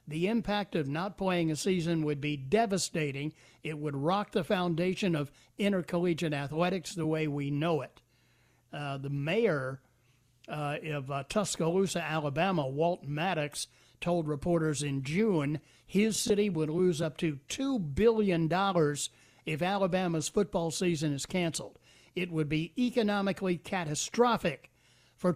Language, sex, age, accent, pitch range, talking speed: English, male, 60-79, American, 150-195 Hz, 135 wpm